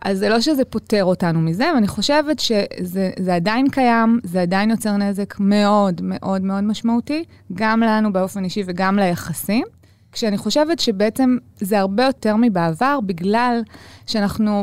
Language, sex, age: Hebrew, female, 20-39